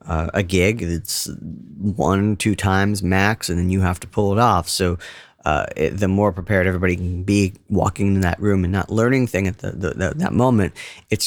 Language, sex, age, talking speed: English, male, 40-59, 215 wpm